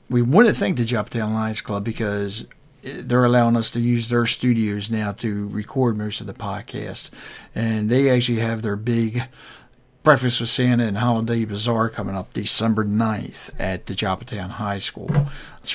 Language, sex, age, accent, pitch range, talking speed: English, male, 50-69, American, 110-130 Hz, 170 wpm